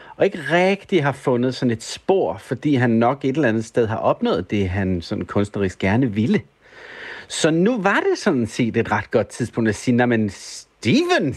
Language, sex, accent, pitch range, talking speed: Danish, male, native, 115-160 Hz, 195 wpm